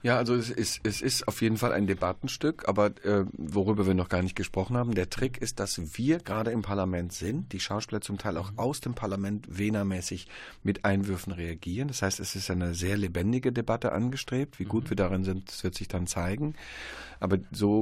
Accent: German